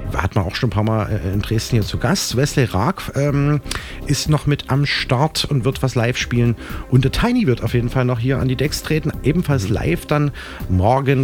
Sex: male